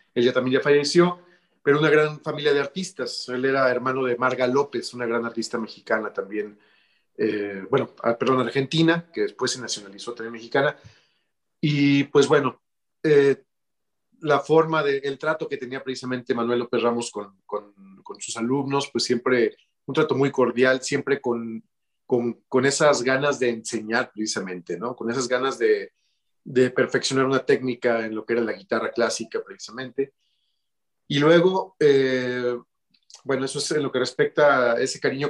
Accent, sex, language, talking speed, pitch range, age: Mexican, male, Spanish, 165 wpm, 120-155 Hz, 40-59